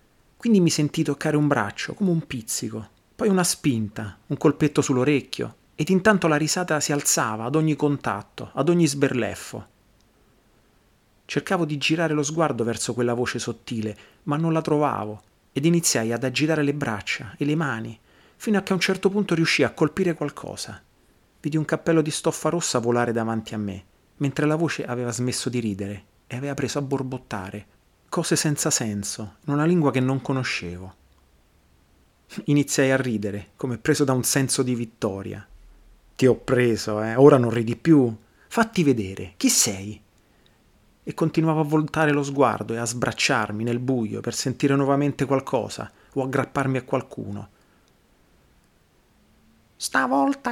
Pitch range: 110-155 Hz